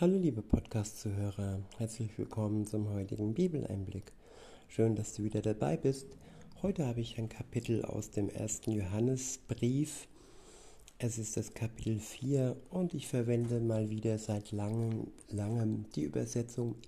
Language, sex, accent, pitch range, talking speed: German, male, German, 110-130 Hz, 135 wpm